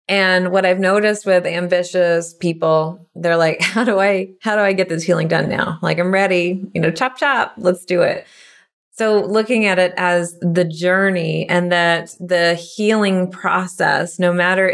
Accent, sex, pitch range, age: American, female, 170-200 Hz, 30-49